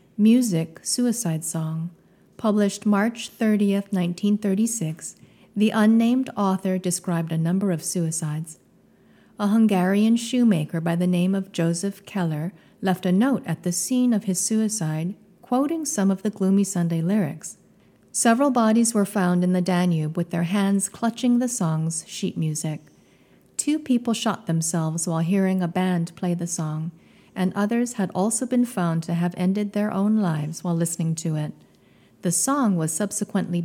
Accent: American